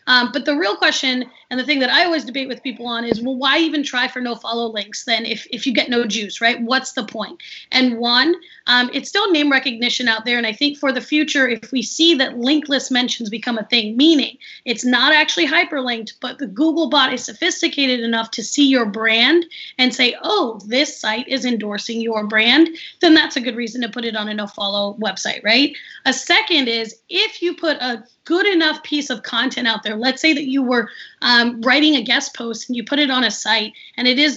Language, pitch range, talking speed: English, 230-295 Hz, 225 wpm